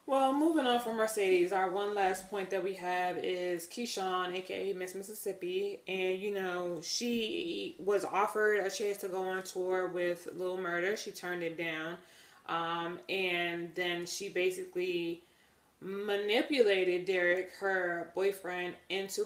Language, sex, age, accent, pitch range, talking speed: English, female, 20-39, American, 170-200 Hz, 145 wpm